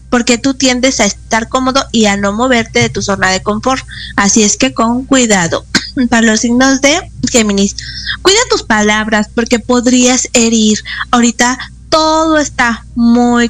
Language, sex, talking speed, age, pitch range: Spanish, female, 155 wpm, 20-39, 215-265 Hz